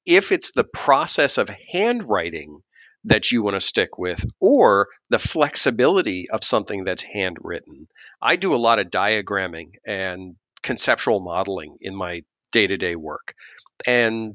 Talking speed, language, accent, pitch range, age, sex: 140 wpm, English, American, 95-125 Hz, 40-59, male